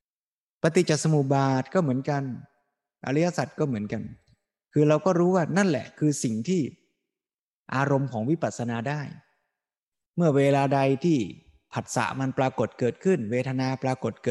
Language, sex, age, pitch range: Thai, male, 20-39, 110-145 Hz